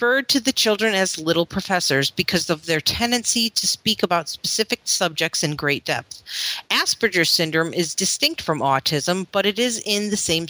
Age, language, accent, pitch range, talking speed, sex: 40-59, English, American, 165-215 Hz, 175 wpm, female